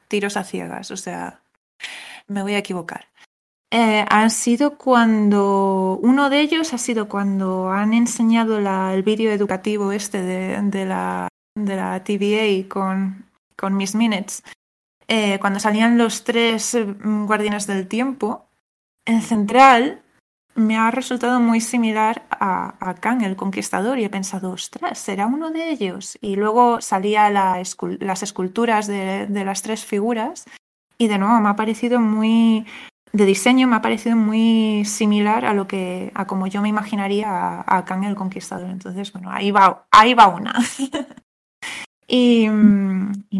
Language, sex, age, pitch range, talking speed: Spanish, female, 20-39, 195-230 Hz, 150 wpm